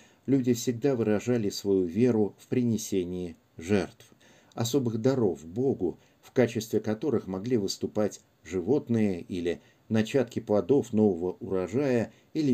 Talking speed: 110 wpm